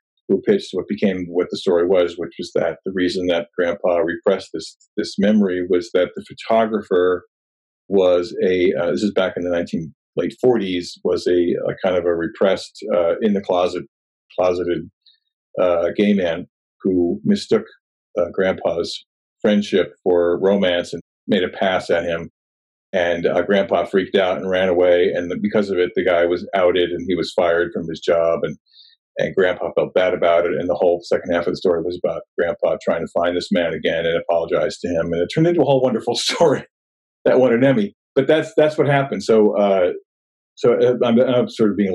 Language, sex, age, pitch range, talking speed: English, male, 40-59, 85-125 Hz, 195 wpm